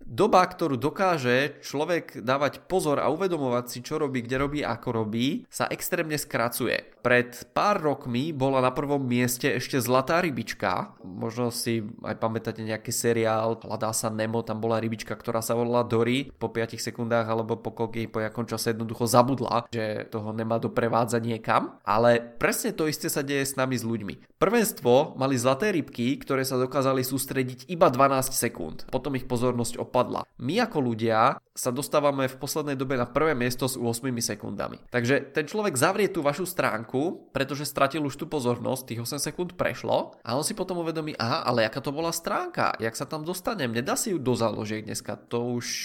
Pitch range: 115-145 Hz